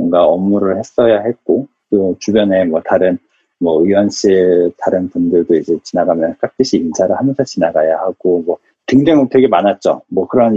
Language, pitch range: Korean, 105-145 Hz